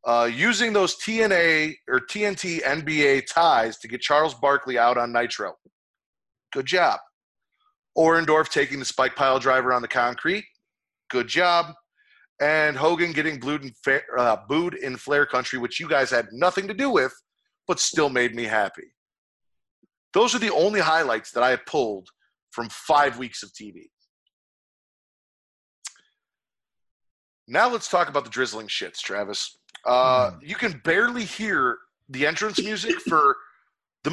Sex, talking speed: male, 140 wpm